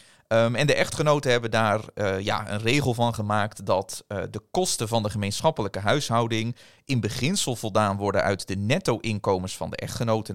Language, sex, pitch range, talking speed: English, male, 105-140 Hz, 160 wpm